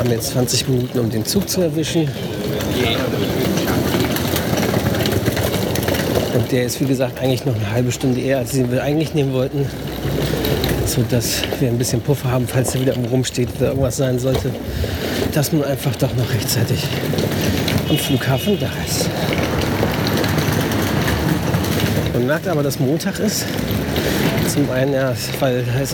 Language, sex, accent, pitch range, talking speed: German, male, German, 125-155 Hz, 150 wpm